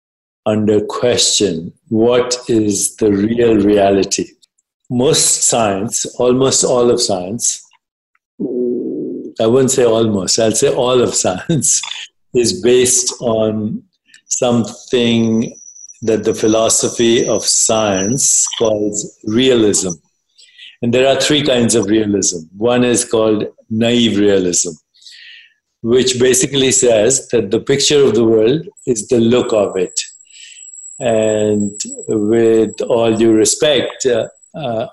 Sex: male